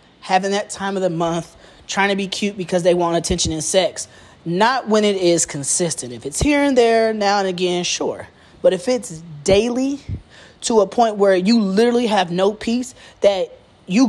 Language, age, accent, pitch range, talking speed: English, 20-39, American, 180-235 Hz, 190 wpm